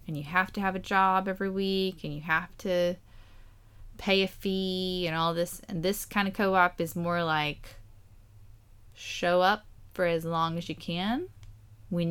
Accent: American